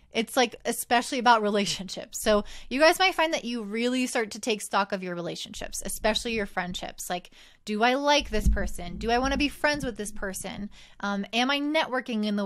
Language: English